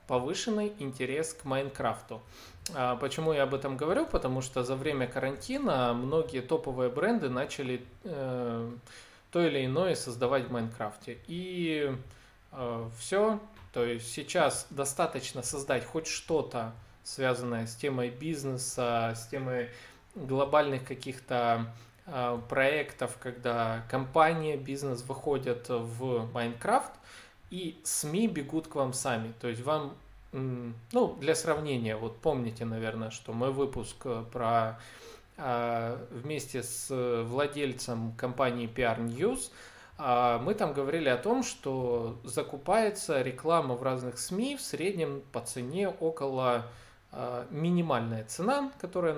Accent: native